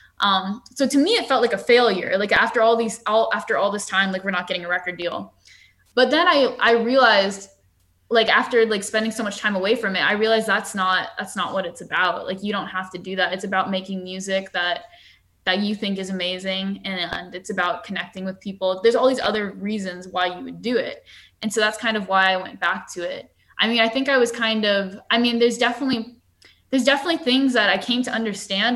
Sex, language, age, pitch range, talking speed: female, English, 10-29, 190-225 Hz, 235 wpm